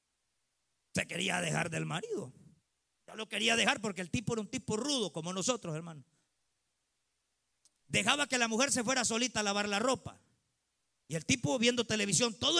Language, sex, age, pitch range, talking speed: Spanish, male, 40-59, 200-295 Hz, 170 wpm